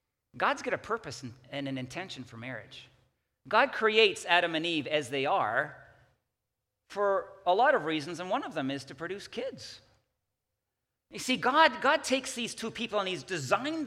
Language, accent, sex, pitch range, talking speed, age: English, American, male, 130-210 Hz, 175 wpm, 40-59